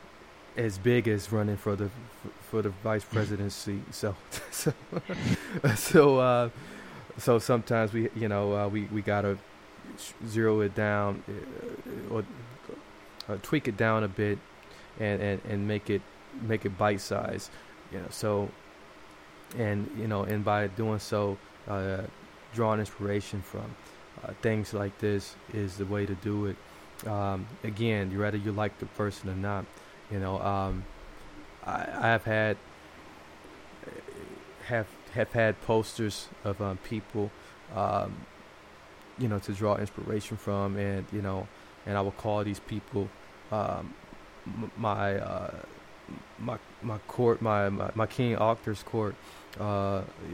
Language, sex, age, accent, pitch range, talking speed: English, male, 20-39, American, 100-110 Hz, 145 wpm